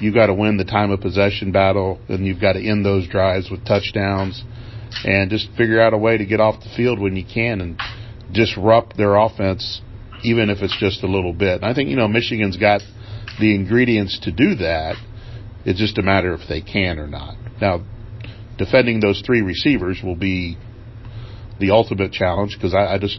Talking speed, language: 200 wpm, English